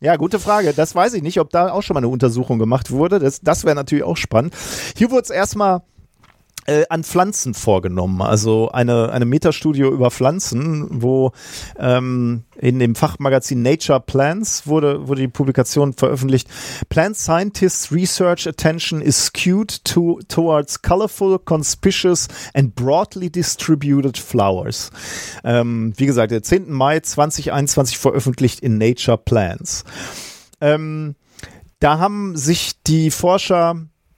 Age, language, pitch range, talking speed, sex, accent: 40-59, German, 120-160 Hz, 135 wpm, male, German